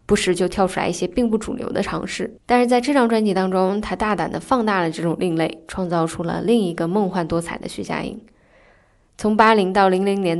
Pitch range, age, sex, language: 175-215 Hz, 10-29, female, Chinese